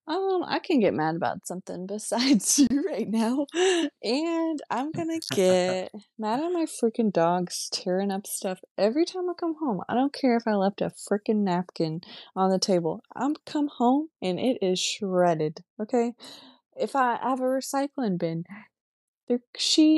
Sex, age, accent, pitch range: female, 20-39, American, 185-245 Hz